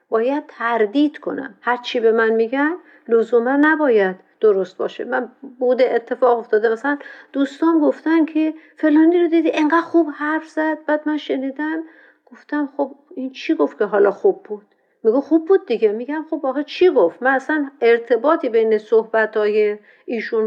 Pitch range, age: 225-325 Hz, 50-69